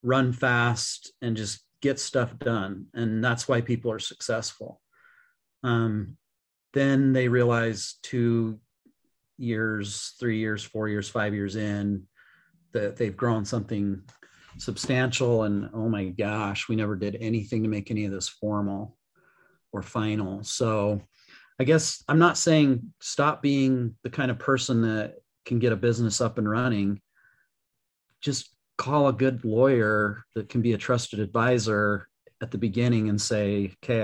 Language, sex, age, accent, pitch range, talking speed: English, male, 40-59, American, 105-125 Hz, 150 wpm